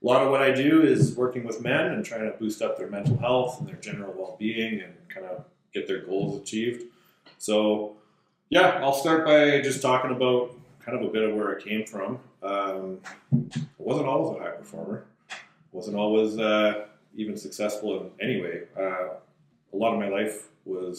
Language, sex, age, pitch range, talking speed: English, male, 30-49, 95-125 Hz, 195 wpm